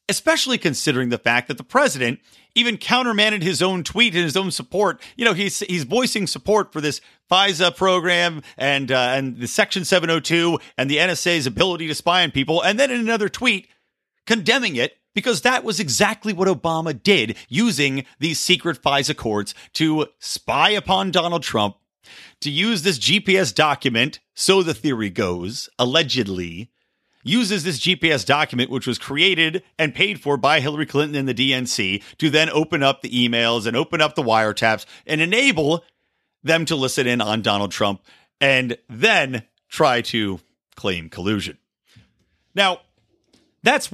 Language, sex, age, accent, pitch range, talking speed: English, male, 40-59, American, 130-190 Hz, 160 wpm